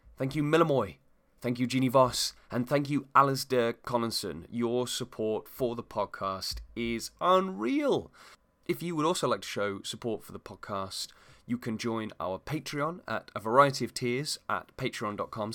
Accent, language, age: British, English, 20-39